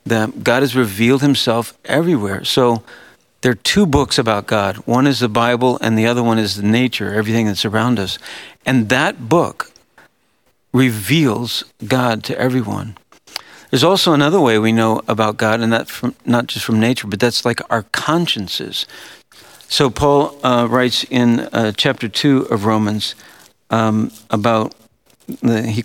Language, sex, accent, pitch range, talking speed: English, male, American, 115-140 Hz, 155 wpm